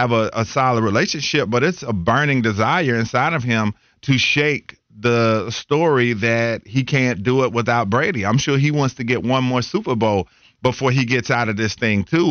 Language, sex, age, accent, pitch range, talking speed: English, male, 40-59, American, 110-130 Hz, 205 wpm